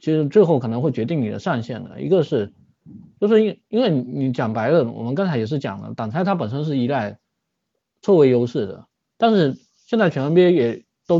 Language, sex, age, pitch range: Chinese, male, 20-39, 115-165 Hz